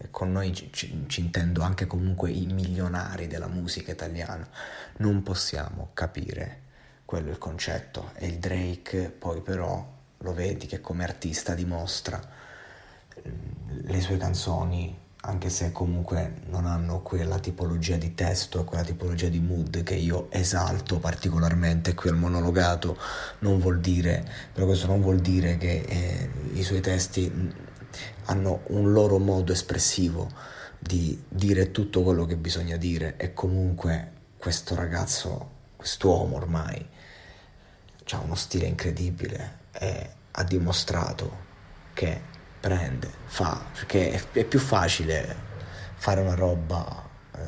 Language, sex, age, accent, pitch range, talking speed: Italian, male, 30-49, native, 85-95 Hz, 125 wpm